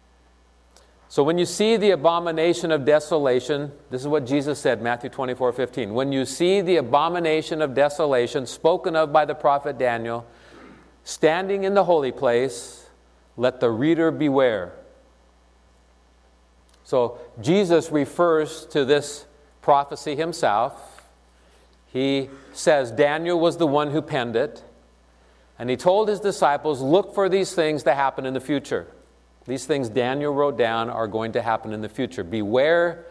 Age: 50-69